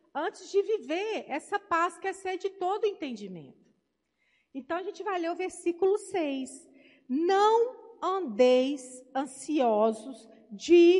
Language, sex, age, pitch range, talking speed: Portuguese, female, 50-69, 250-360 Hz, 120 wpm